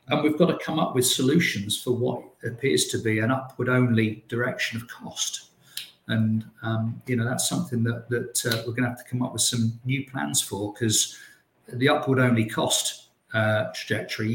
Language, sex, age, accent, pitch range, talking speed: English, male, 50-69, British, 115-130 Hz, 195 wpm